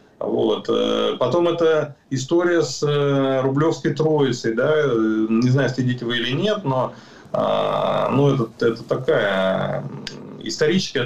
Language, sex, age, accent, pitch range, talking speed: Ukrainian, male, 30-49, native, 130-175 Hz, 110 wpm